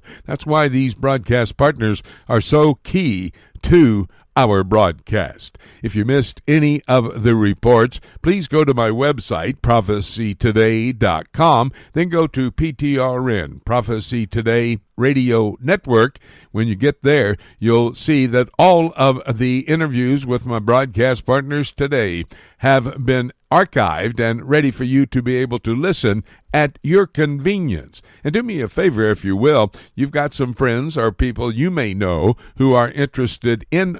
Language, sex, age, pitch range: English, male, 60-79, 110-140 Hz